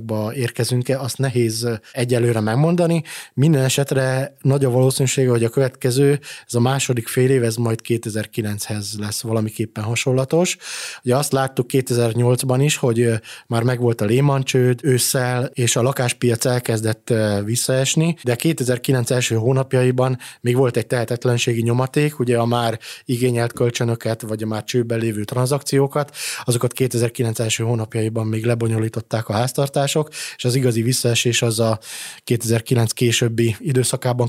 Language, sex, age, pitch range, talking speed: Hungarian, male, 20-39, 115-135 Hz, 135 wpm